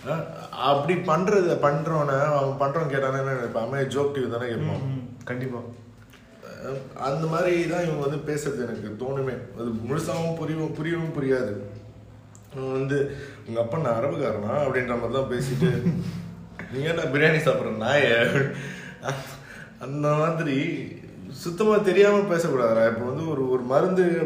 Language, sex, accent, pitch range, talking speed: Tamil, male, native, 115-155 Hz, 105 wpm